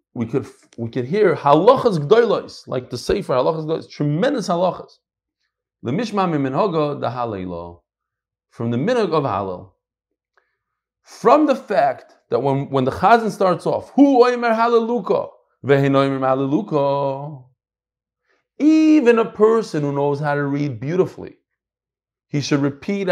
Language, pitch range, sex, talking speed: English, 140-215 Hz, male, 125 wpm